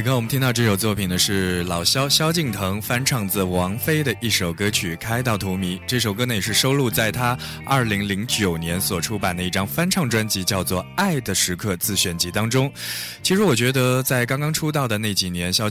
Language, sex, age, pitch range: Chinese, male, 20-39, 95-125 Hz